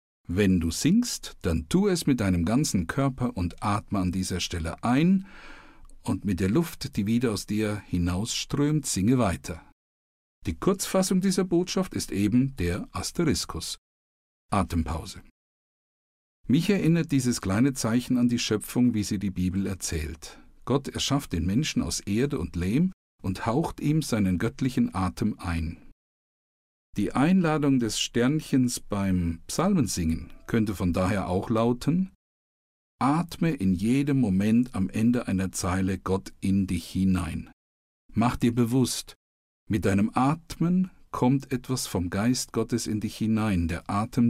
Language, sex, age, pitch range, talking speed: German, male, 50-69, 90-130 Hz, 140 wpm